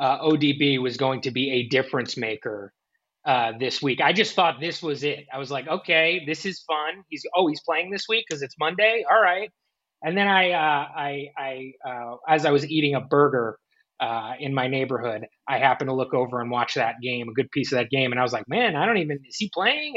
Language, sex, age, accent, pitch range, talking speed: English, male, 20-39, American, 135-185 Hz, 240 wpm